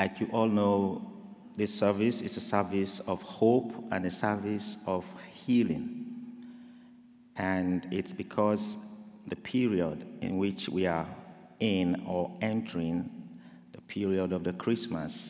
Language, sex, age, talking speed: English, male, 50-69, 130 wpm